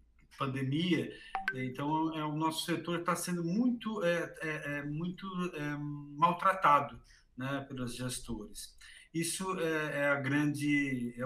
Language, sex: Portuguese, male